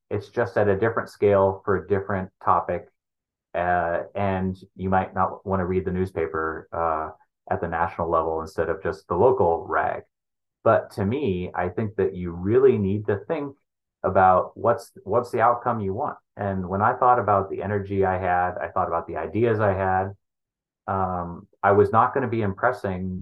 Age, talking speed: 30-49, 190 wpm